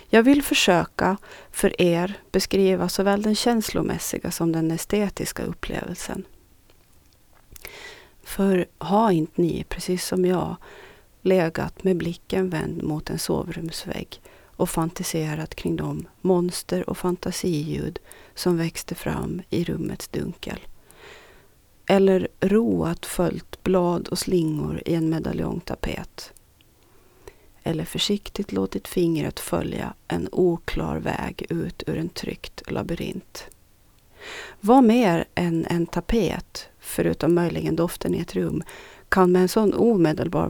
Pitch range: 165-205 Hz